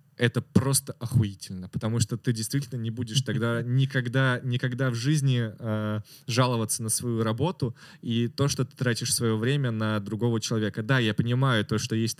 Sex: male